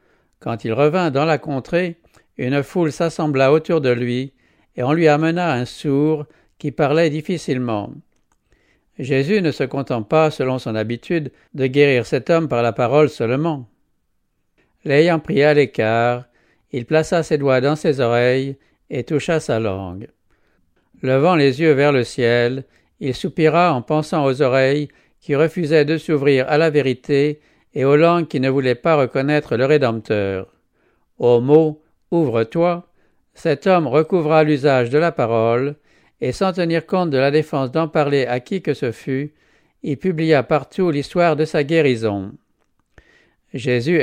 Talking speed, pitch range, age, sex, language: 155 wpm, 125-160 Hz, 60-79, male, English